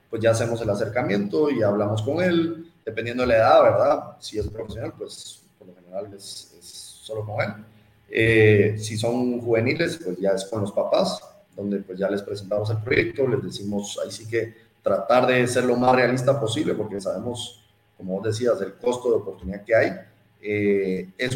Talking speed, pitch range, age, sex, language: 190 wpm, 100-120 Hz, 30-49, male, Spanish